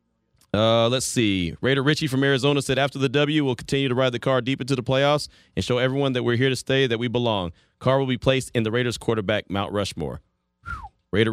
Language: English